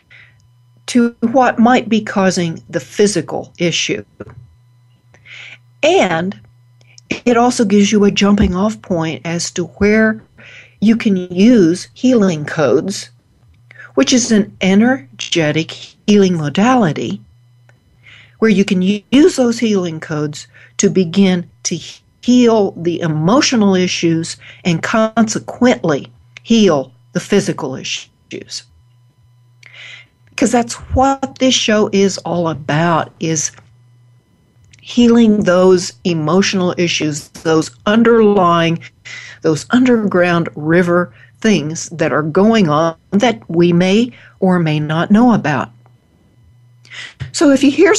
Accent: American